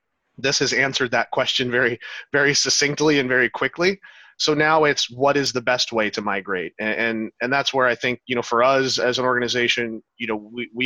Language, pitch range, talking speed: English, 115-135 Hz, 210 wpm